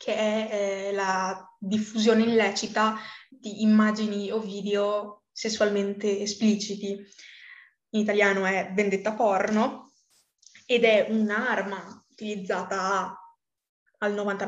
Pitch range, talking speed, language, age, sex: 200-235 Hz, 90 wpm, Italian, 20-39, female